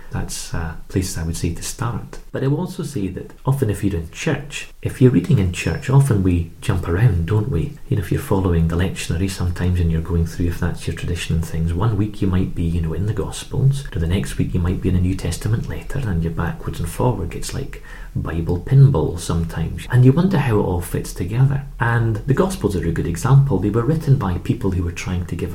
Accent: British